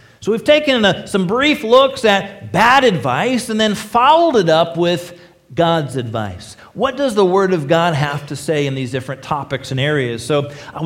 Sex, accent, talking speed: male, American, 190 wpm